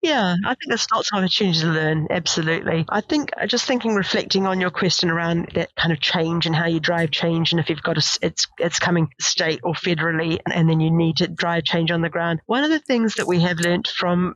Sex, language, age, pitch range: female, English, 40-59, 165-195 Hz